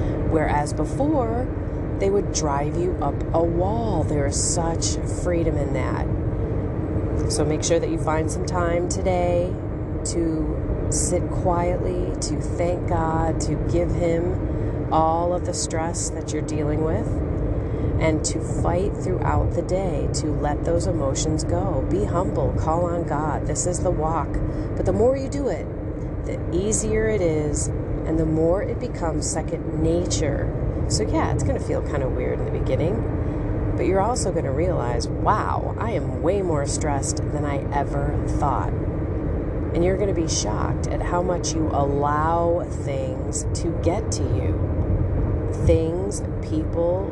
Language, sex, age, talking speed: English, female, 30-49, 160 wpm